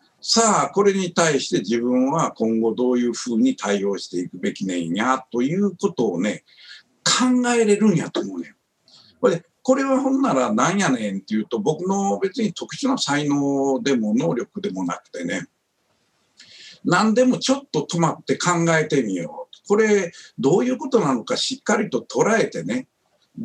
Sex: male